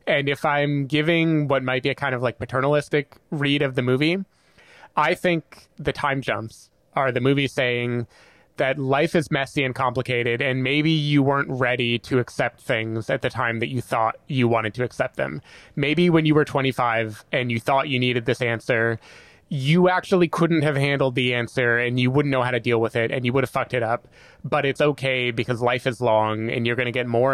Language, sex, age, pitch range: English, male, 20-39, 120-150 Hz